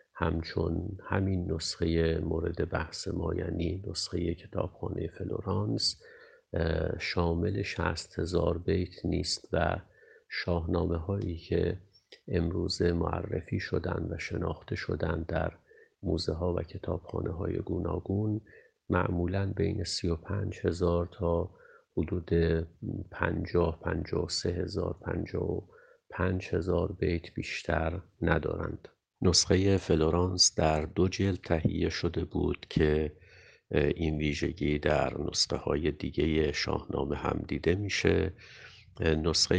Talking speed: 100 wpm